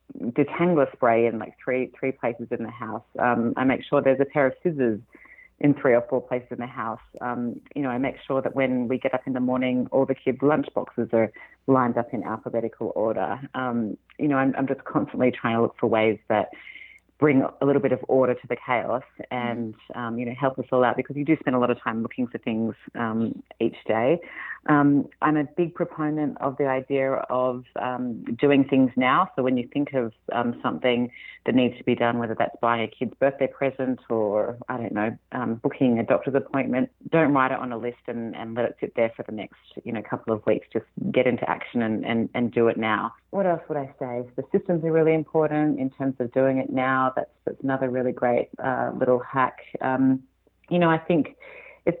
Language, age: English, 30-49